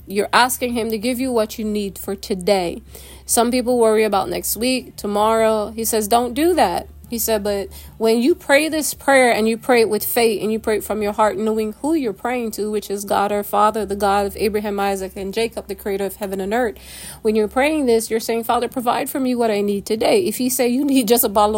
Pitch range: 200-240 Hz